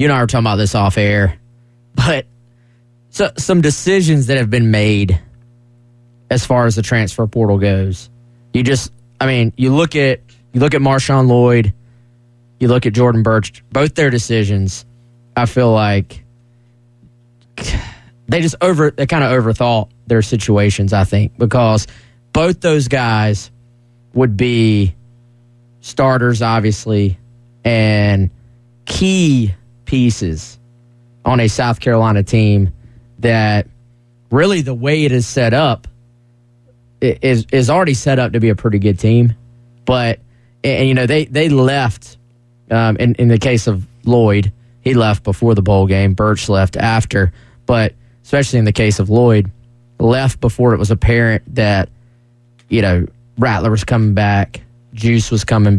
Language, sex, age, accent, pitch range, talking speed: English, male, 20-39, American, 110-120 Hz, 150 wpm